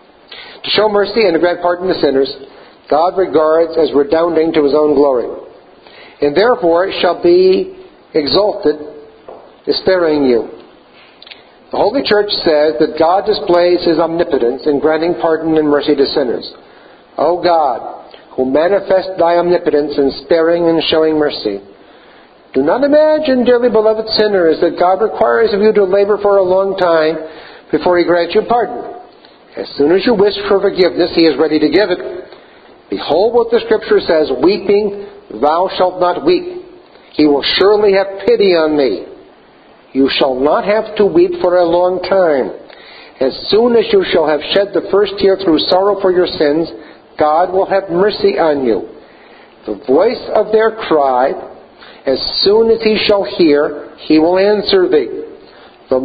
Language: English